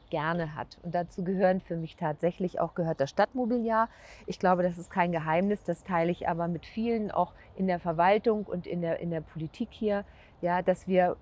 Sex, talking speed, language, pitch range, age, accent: female, 205 wpm, German, 175-205 Hz, 50-69, German